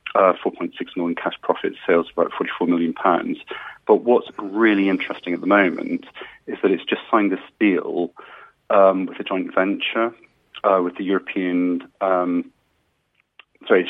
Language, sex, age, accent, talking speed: English, male, 40-59, British, 155 wpm